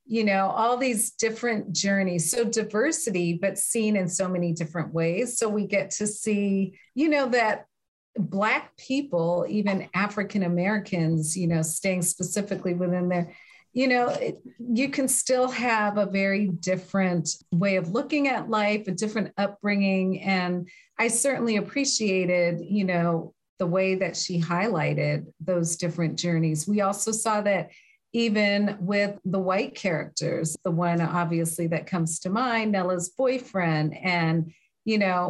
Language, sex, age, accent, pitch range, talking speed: English, female, 40-59, American, 170-215 Hz, 145 wpm